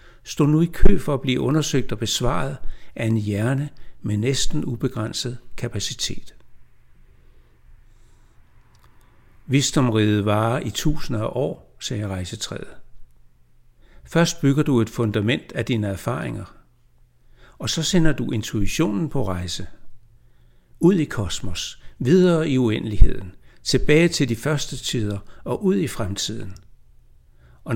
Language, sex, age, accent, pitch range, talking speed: Danish, male, 60-79, native, 90-135 Hz, 120 wpm